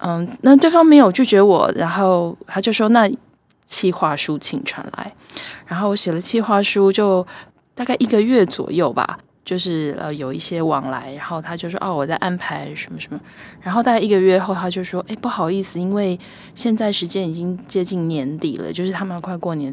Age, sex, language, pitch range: 20-39, female, Chinese, 165-205 Hz